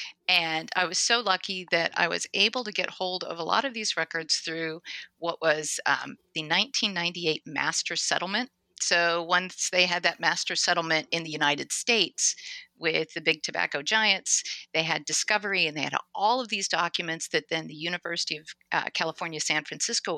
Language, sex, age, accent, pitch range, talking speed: English, female, 50-69, American, 165-205 Hz, 180 wpm